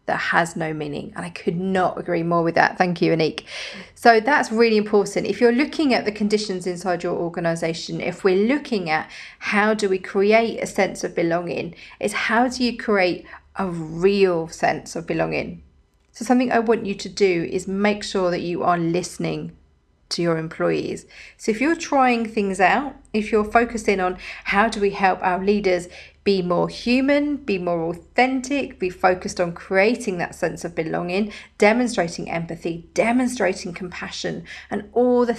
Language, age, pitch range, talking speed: English, 40-59, 175-215 Hz, 175 wpm